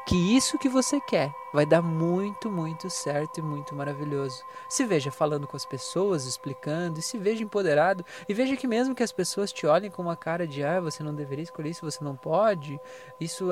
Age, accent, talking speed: 20-39, Brazilian, 210 wpm